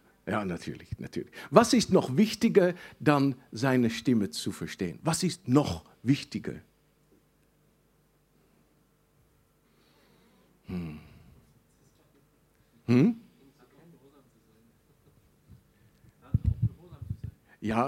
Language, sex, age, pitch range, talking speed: German, male, 60-79, 130-190 Hz, 65 wpm